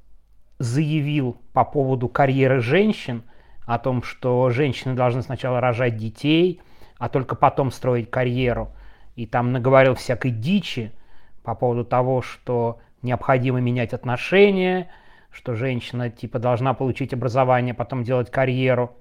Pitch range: 120-135 Hz